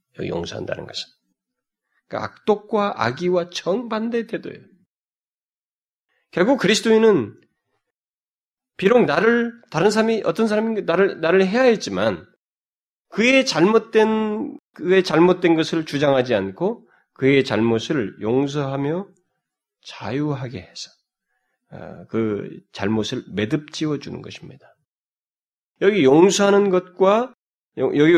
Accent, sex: native, male